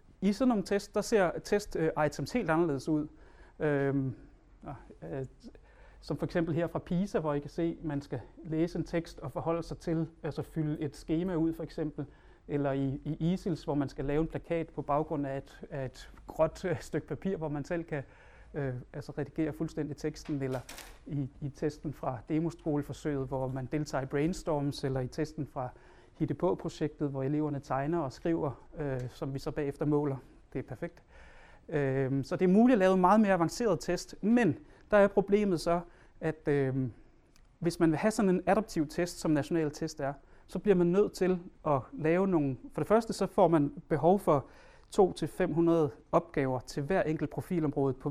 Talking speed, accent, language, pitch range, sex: 185 wpm, Danish, English, 145-170 Hz, male